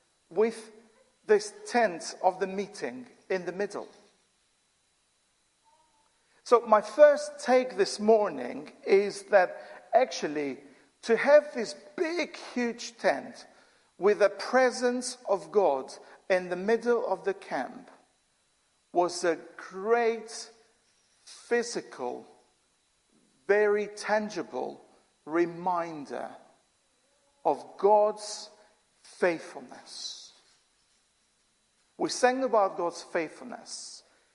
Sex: male